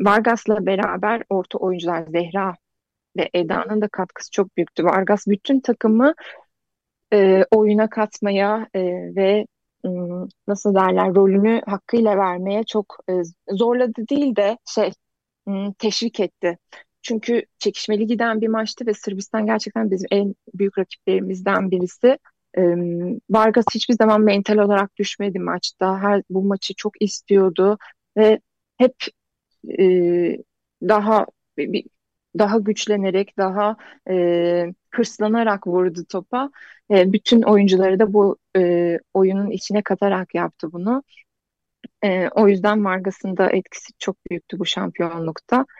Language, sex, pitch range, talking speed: Turkish, female, 185-215 Hz, 120 wpm